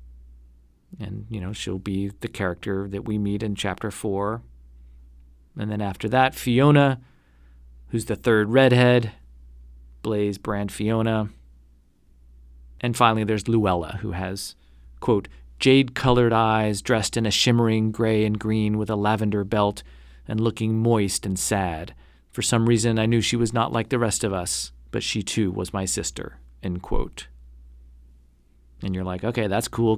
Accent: American